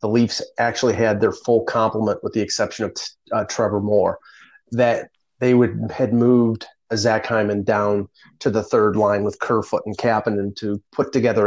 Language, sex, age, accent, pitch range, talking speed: English, male, 30-49, American, 105-120 Hz, 180 wpm